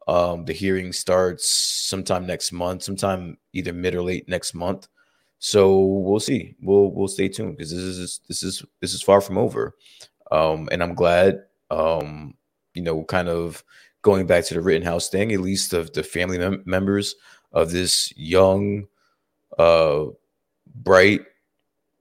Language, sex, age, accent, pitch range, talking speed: English, male, 20-39, American, 90-100 Hz, 165 wpm